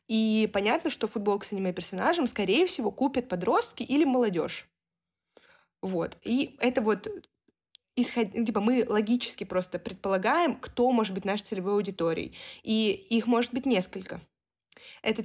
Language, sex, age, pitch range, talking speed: Russian, female, 20-39, 195-240 Hz, 135 wpm